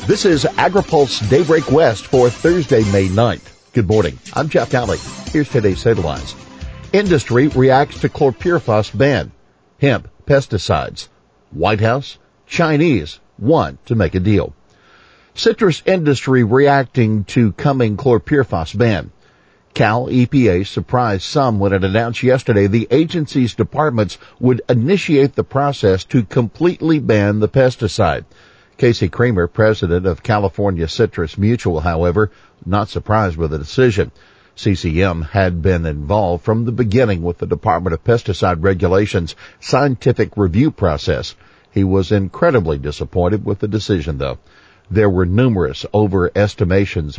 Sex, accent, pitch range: male, American, 95-125 Hz